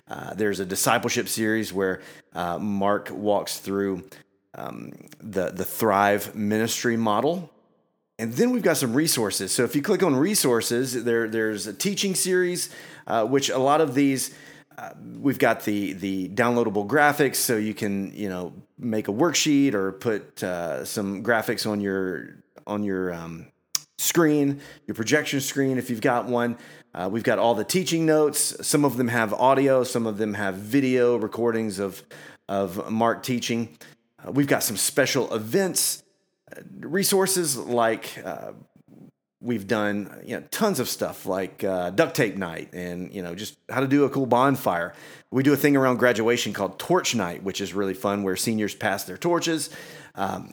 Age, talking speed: 30-49, 170 wpm